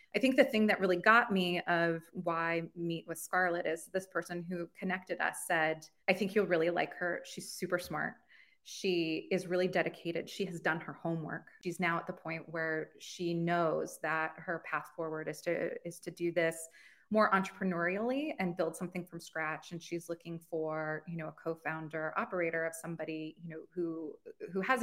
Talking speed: 190 wpm